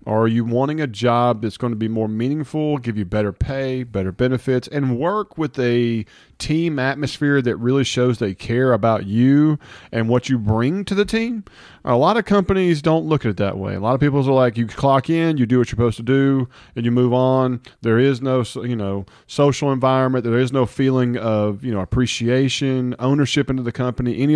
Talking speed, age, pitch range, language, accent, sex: 215 wpm, 40-59, 115-140 Hz, English, American, male